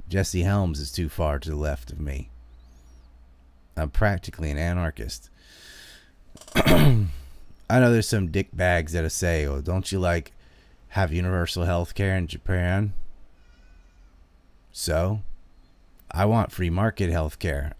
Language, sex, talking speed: English, male, 120 wpm